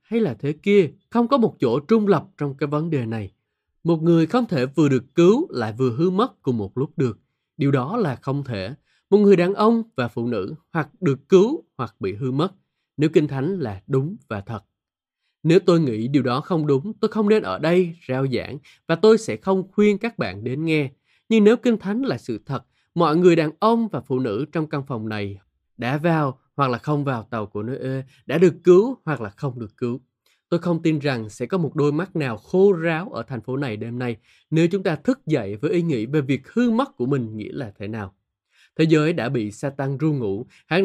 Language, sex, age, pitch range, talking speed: Vietnamese, male, 20-39, 125-185 Hz, 235 wpm